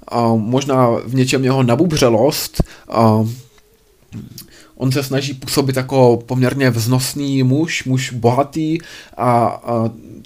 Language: Czech